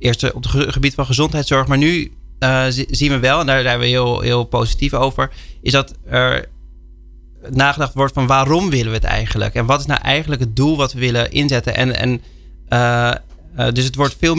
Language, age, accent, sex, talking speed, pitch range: Dutch, 20-39, Dutch, male, 210 wpm, 115-135 Hz